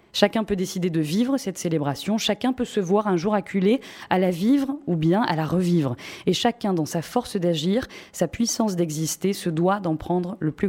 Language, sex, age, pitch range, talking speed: French, female, 20-39, 175-225 Hz, 215 wpm